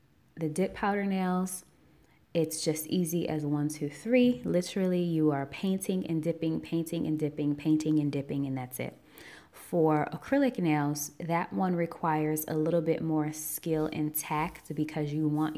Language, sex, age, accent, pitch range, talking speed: English, female, 20-39, American, 150-165 Hz, 160 wpm